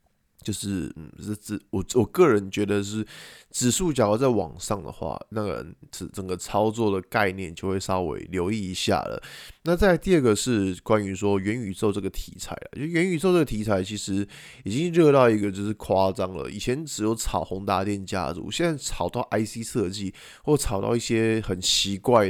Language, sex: Chinese, male